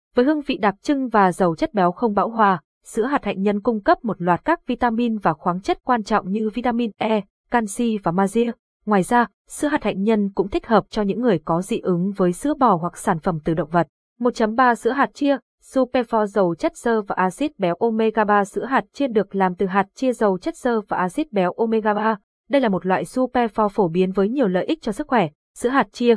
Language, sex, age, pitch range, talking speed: Vietnamese, female, 20-39, 190-245 Hz, 235 wpm